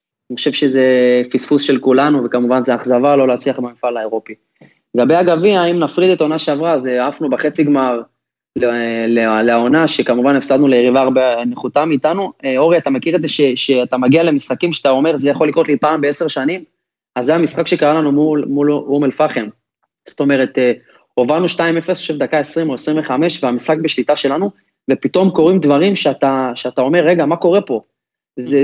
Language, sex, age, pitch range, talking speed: Hebrew, male, 20-39, 130-170 Hz, 170 wpm